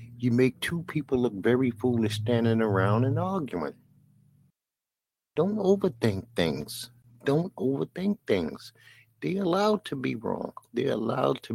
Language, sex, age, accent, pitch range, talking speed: English, male, 60-79, American, 95-130 Hz, 135 wpm